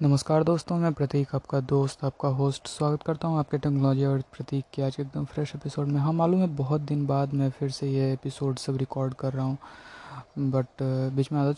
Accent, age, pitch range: native, 20-39, 135-155 Hz